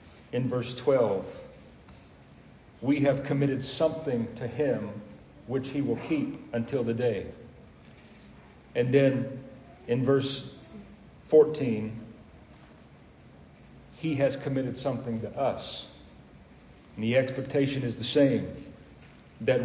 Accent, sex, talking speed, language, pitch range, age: American, male, 105 wpm, English, 115-140 Hz, 40-59